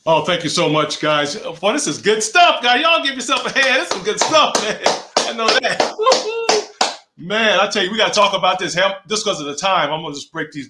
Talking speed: 250 wpm